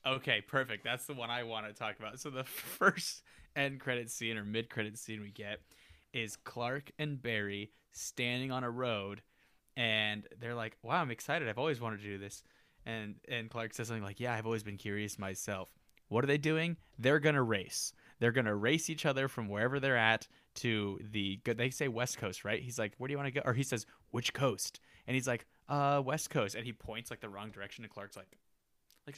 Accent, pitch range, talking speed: American, 105-130 Hz, 225 wpm